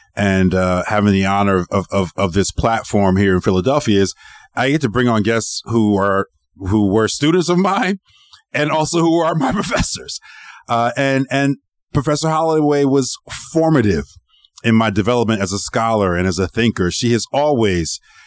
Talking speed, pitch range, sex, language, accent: 175 wpm, 100-130 Hz, male, English, American